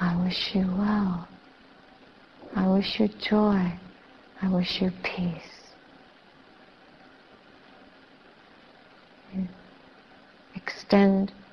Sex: female